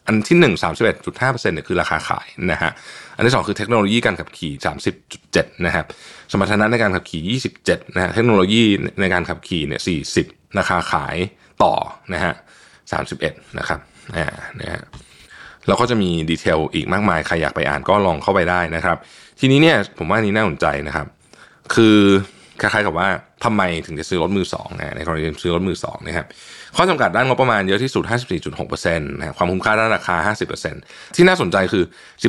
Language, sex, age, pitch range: Thai, male, 20-39, 90-115 Hz